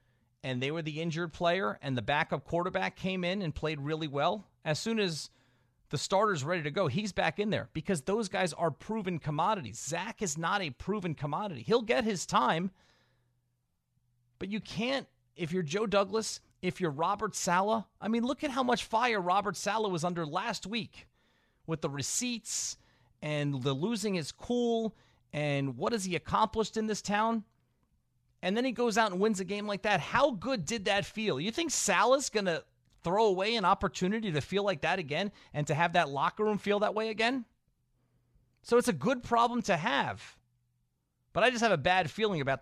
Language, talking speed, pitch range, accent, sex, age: English, 195 wpm, 145-210 Hz, American, male, 40-59